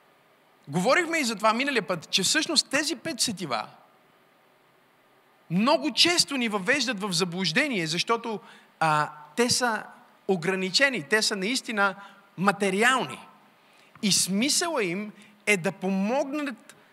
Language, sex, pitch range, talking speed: Bulgarian, male, 185-235 Hz, 115 wpm